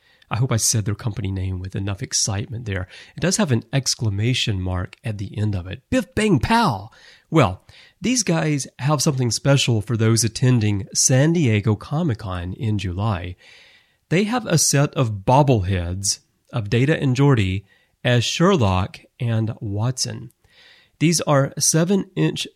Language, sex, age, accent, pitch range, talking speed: English, male, 30-49, American, 105-140 Hz, 150 wpm